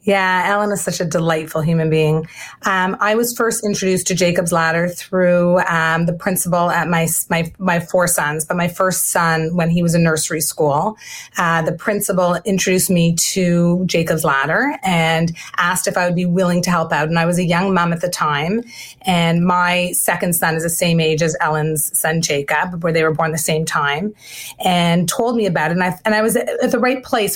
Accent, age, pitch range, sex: American, 30-49, 165-190 Hz, female